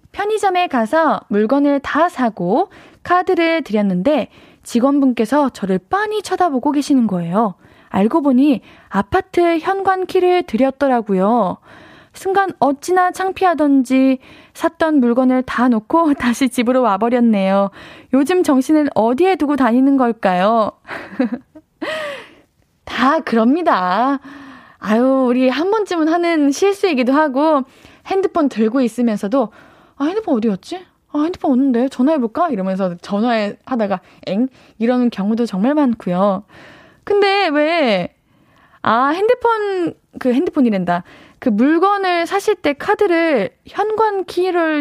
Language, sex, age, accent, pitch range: Korean, female, 20-39, native, 235-330 Hz